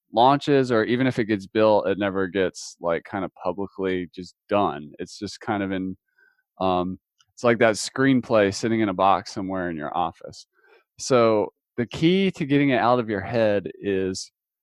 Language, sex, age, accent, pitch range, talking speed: English, male, 20-39, American, 100-125 Hz, 185 wpm